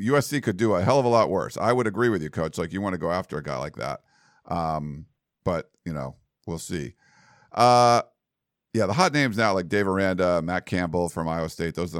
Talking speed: 235 wpm